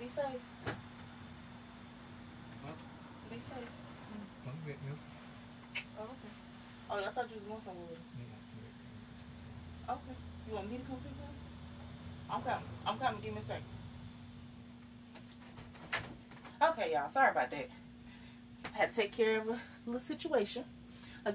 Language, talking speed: English, 140 wpm